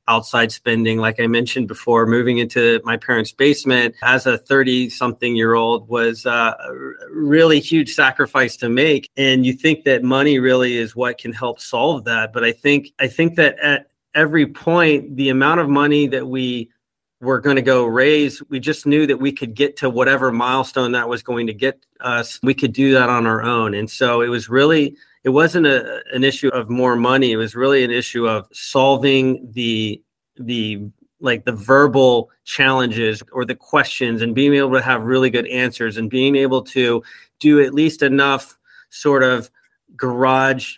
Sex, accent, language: male, American, English